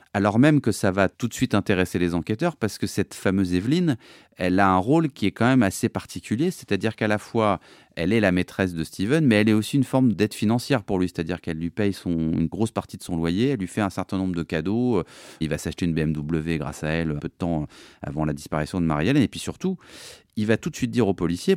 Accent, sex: French, male